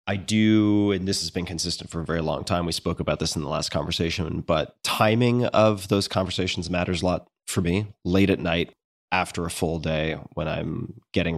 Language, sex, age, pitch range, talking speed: English, male, 30-49, 80-95 Hz, 210 wpm